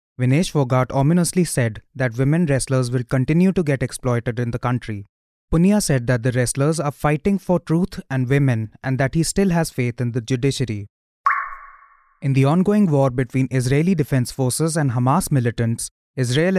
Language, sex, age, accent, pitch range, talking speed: English, male, 20-39, Indian, 125-165 Hz, 170 wpm